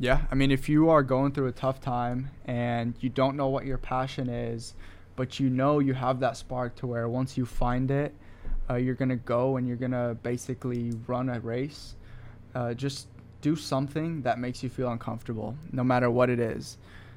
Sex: male